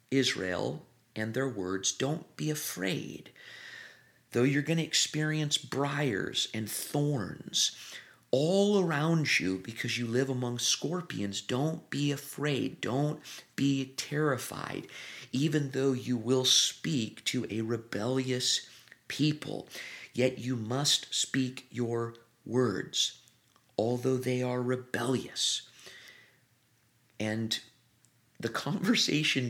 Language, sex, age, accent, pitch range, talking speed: English, male, 50-69, American, 120-150 Hz, 105 wpm